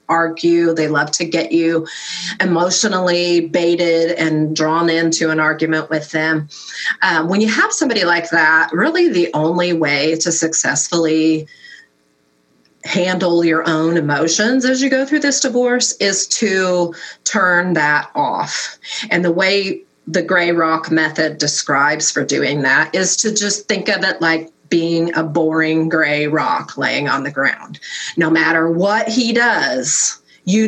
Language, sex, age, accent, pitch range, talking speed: English, female, 30-49, American, 160-195 Hz, 150 wpm